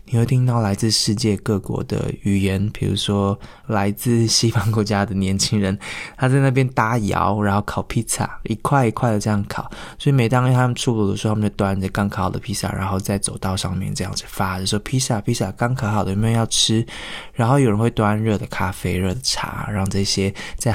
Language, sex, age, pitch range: Chinese, male, 20-39, 100-115 Hz